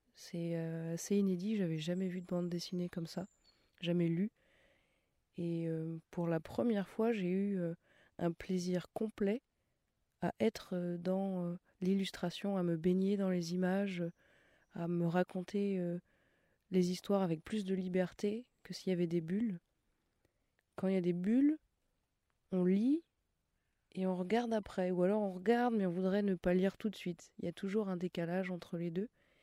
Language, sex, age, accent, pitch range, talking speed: French, female, 20-39, French, 170-195 Hz, 165 wpm